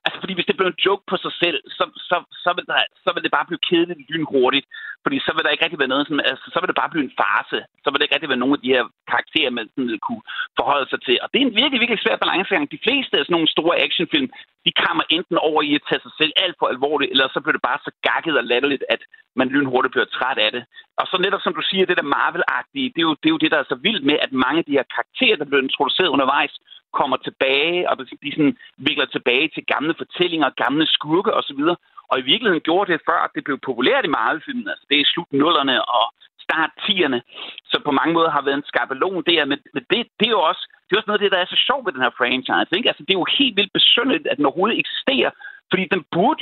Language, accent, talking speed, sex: Danish, native, 255 wpm, male